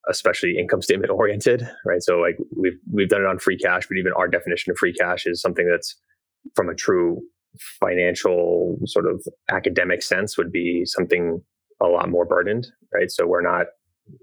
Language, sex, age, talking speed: English, male, 20-39, 180 wpm